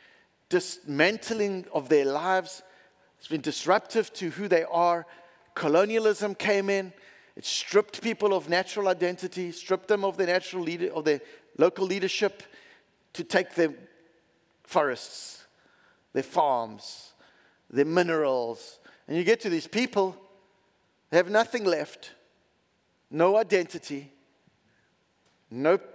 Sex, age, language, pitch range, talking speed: male, 50-69, English, 160-195 Hz, 120 wpm